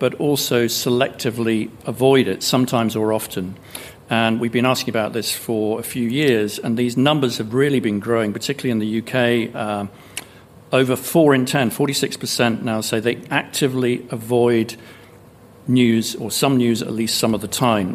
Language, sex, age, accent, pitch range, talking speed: English, male, 50-69, British, 110-130 Hz, 165 wpm